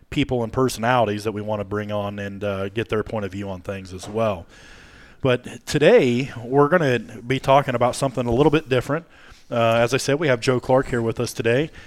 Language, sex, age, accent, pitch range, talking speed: English, male, 30-49, American, 115-135 Hz, 230 wpm